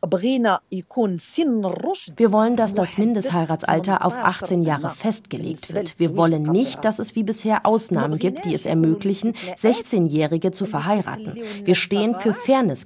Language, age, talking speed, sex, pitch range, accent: German, 30-49, 135 wpm, female, 165-210 Hz, German